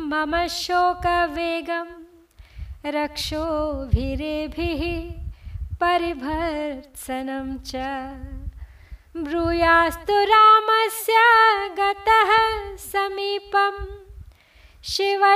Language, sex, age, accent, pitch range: Hindi, female, 20-39, native, 270-355 Hz